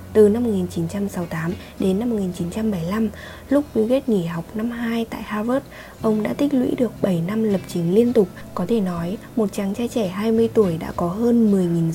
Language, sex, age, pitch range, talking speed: Vietnamese, female, 20-39, 175-225 Hz, 195 wpm